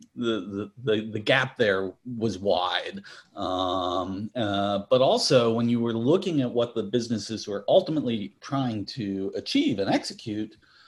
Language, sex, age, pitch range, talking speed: English, male, 40-59, 100-130 Hz, 145 wpm